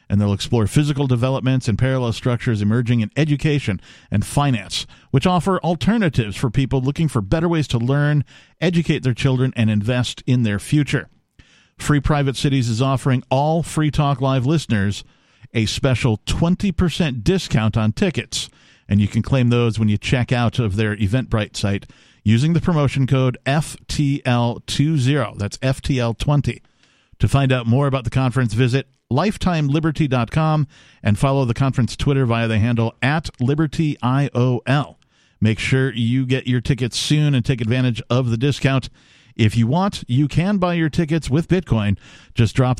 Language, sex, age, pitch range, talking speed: English, male, 50-69, 115-145 Hz, 160 wpm